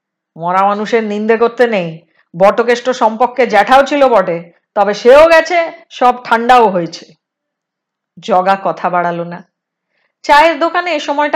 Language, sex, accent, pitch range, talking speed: Hindi, female, native, 200-300 Hz, 90 wpm